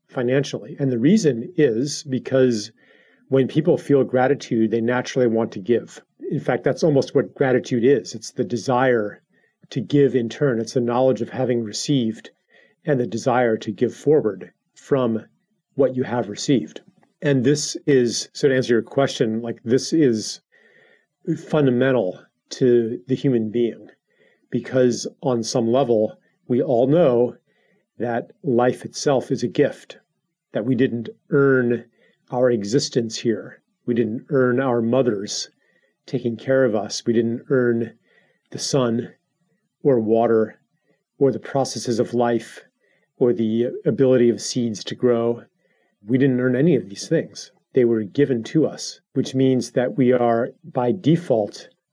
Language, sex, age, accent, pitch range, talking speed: English, male, 40-59, American, 115-135 Hz, 150 wpm